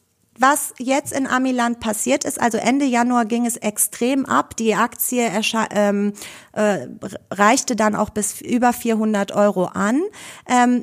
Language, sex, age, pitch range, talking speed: German, female, 30-49, 215-260 Hz, 145 wpm